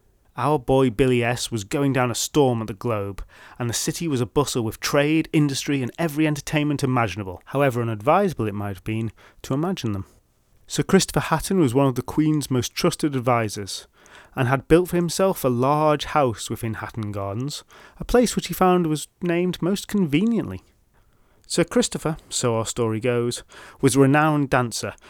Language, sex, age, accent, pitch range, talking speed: English, male, 30-49, British, 110-155 Hz, 180 wpm